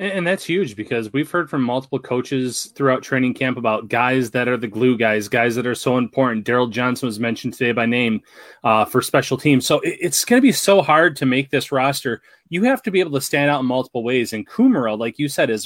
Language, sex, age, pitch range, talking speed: English, male, 30-49, 125-160 Hz, 240 wpm